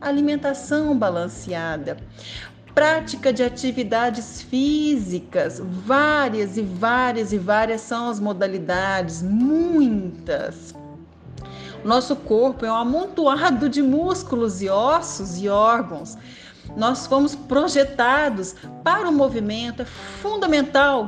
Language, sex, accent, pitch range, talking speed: Portuguese, female, Brazilian, 215-295 Hz, 95 wpm